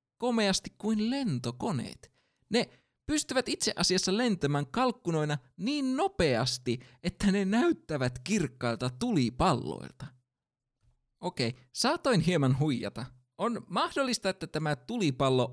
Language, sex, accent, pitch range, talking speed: Finnish, male, native, 125-180 Hz, 100 wpm